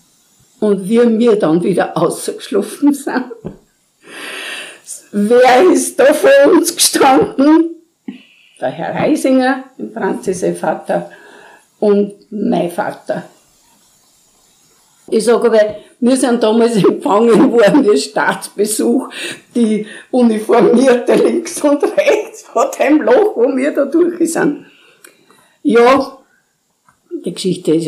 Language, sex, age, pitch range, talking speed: German, female, 50-69, 195-290 Hz, 105 wpm